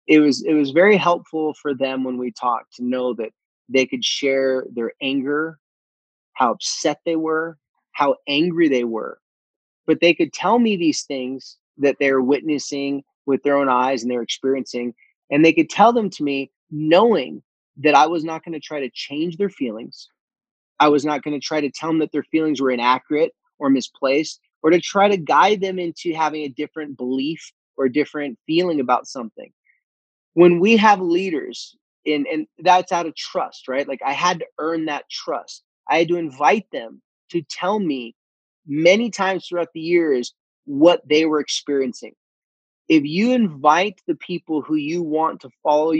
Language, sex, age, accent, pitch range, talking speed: English, male, 20-39, American, 140-175 Hz, 180 wpm